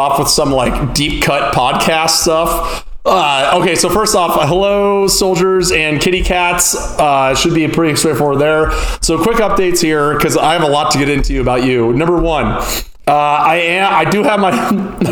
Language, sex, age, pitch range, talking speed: English, male, 30-49, 135-170 Hz, 185 wpm